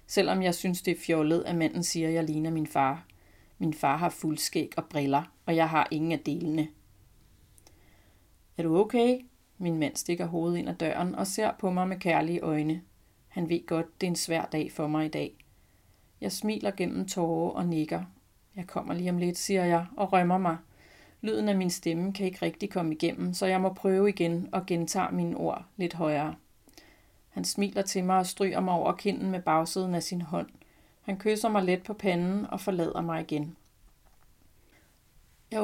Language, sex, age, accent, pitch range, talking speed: Danish, female, 40-59, native, 160-190 Hz, 195 wpm